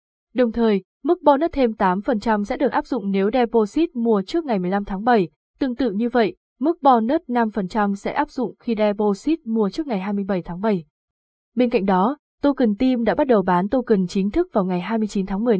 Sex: female